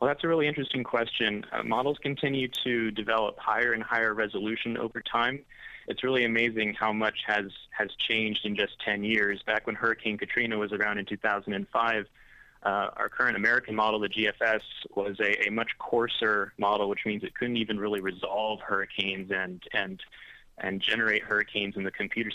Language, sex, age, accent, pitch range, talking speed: English, male, 20-39, American, 105-115 Hz, 175 wpm